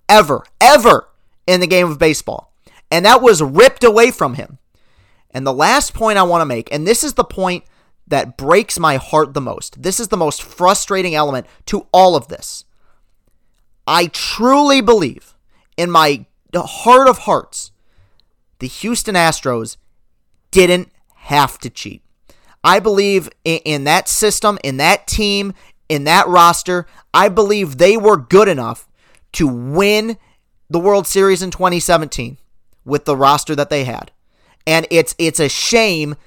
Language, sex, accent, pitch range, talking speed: English, male, American, 140-195 Hz, 155 wpm